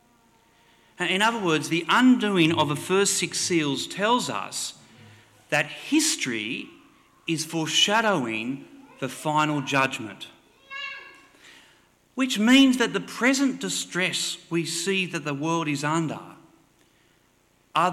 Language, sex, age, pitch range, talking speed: English, male, 40-59, 130-185 Hz, 110 wpm